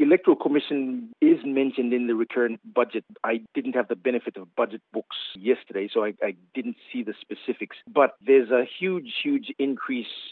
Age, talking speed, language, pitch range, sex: 40-59, 175 wpm, English, 110-135 Hz, male